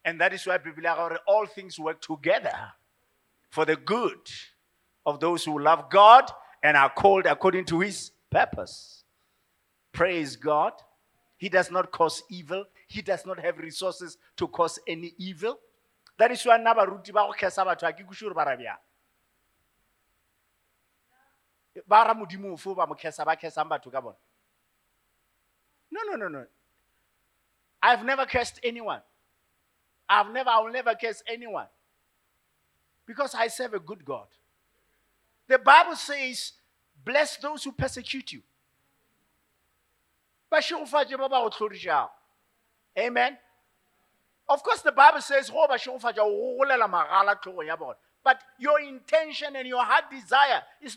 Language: English